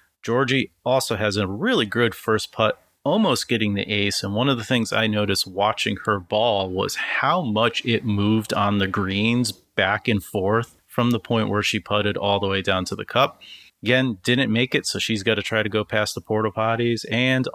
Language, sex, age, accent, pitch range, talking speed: English, male, 30-49, American, 100-125 Hz, 210 wpm